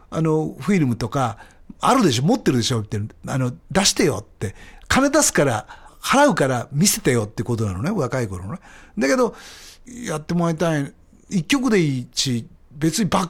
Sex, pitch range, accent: male, 105-155 Hz, native